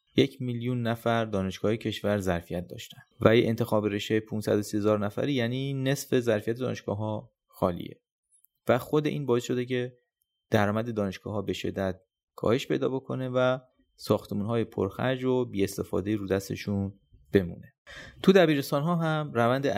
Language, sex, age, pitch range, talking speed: Persian, male, 30-49, 100-125 Hz, 135 wpm